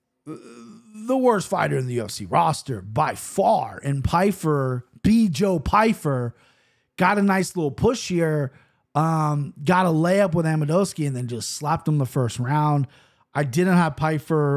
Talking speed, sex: 155 wpm, male